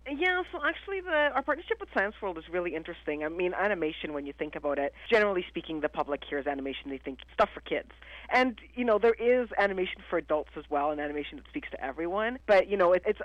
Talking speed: 240 wpm